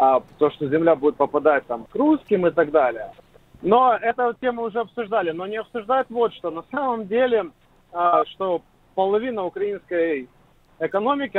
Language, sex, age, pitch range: Ukrainian, male, 30-49, 185-250 Hz